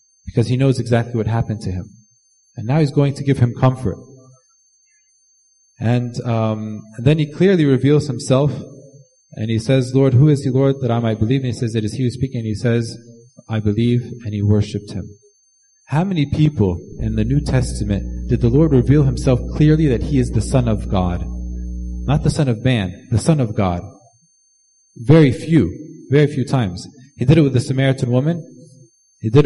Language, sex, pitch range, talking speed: English, male, 105-135 Hz, 195 wpm